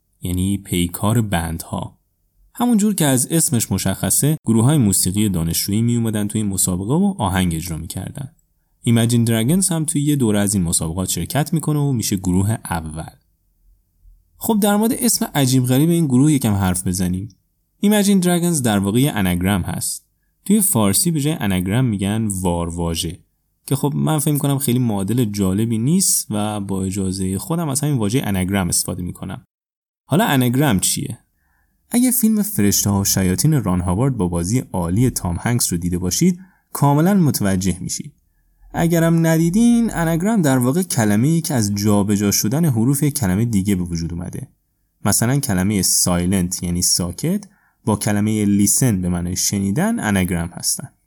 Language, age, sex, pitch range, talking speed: Persian, 10-29, male, 95-150 Hz, 155 wpm